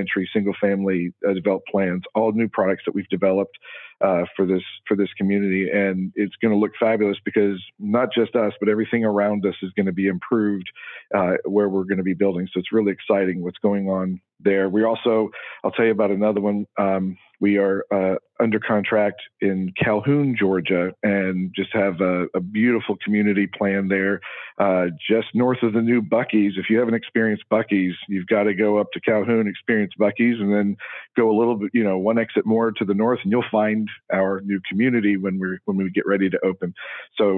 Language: English